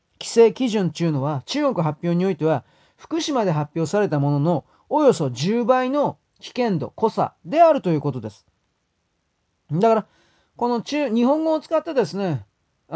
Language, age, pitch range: Japanese, 30-49, 145-220 Hz